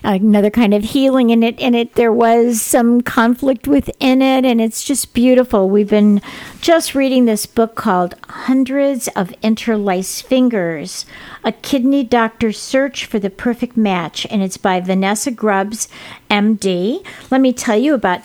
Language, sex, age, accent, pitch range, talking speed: English, female, 50-69, American, 205-260 Hz, 160 wpm